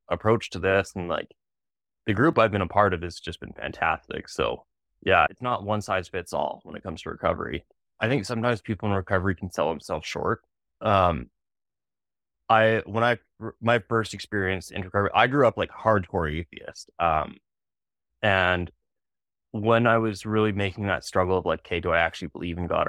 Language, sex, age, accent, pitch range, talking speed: English, male, 20-39, American, 95-120 Hz, 190 wpm